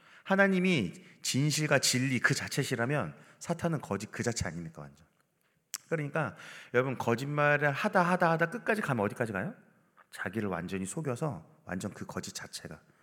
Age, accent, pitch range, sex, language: 30-49, native, 110-175 Hz, male, Korean